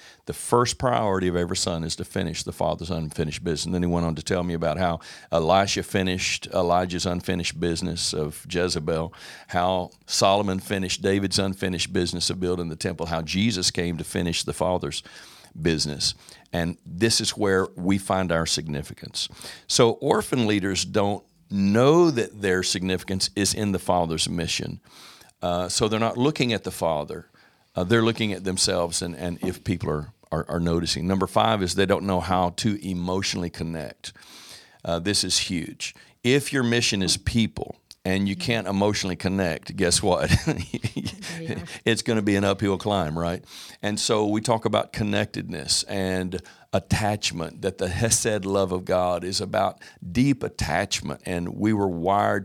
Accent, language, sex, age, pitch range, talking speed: American, English, male, 50-69, 90-105 Hz, 165 wpm